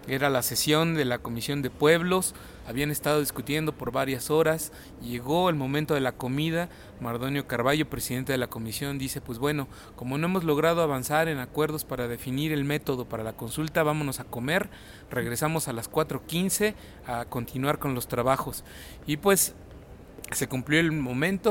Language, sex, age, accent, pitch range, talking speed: English, male, 30-49, Mexican, 125-155 Hz, 170 wpm